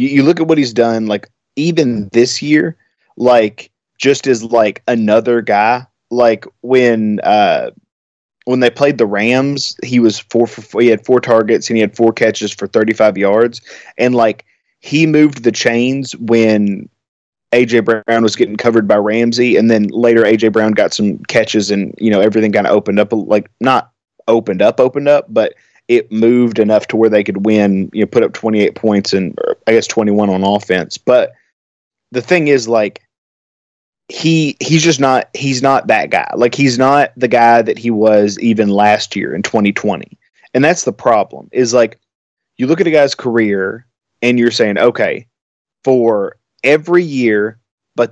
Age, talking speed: 20-39, 180 wpm